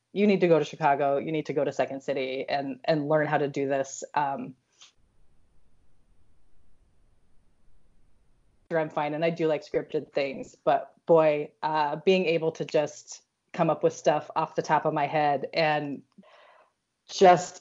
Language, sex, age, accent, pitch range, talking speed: English, female, 30-49, American, 145-180 Hz, 165 wpm